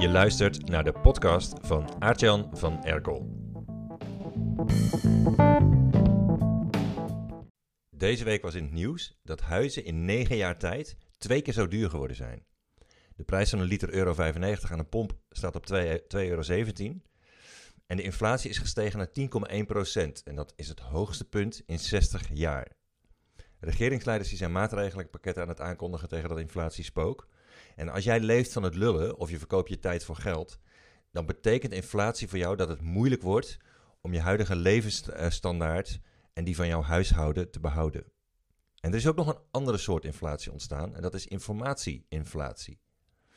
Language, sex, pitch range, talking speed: Dutch, male, 85-110 Hz, 165 wpm